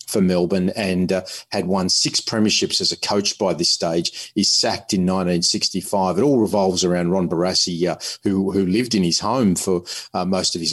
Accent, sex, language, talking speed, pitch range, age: Australian, male, English, 200 wpm, 90-110 Hz, 40-59